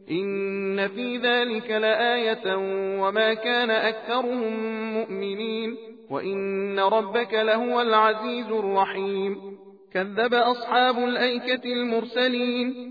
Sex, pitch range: male, 215-245 Hz